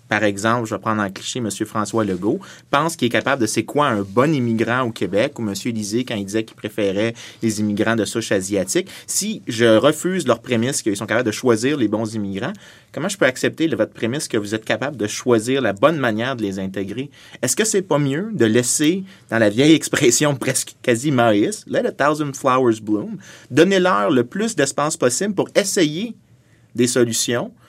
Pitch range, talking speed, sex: 115-145 Hz, 210 wpm, male